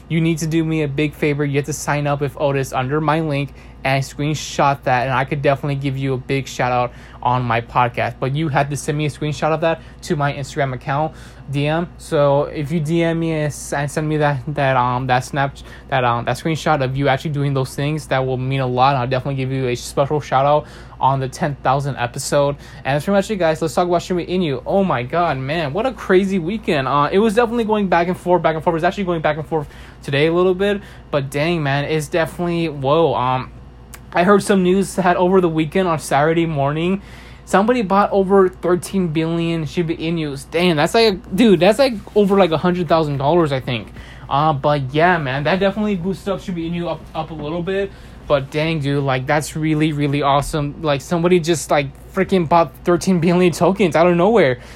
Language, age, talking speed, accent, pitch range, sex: English, 20-39, 230 wpm, American, 140-175 Hz, male